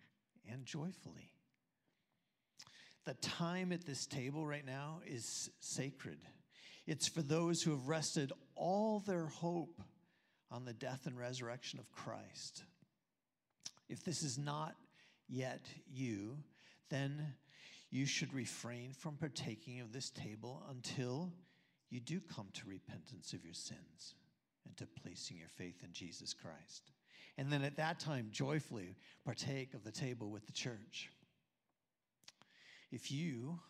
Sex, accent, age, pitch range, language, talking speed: male, American, 50-69, 115-155 Hz, English, 130 wpm